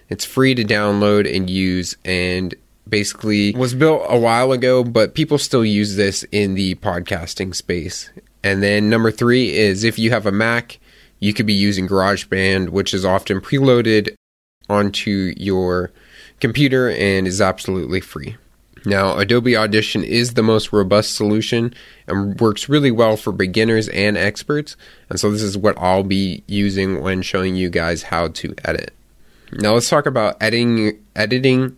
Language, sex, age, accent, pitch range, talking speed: English, male, 20-39, American, 95-110 Hz, 160 wpm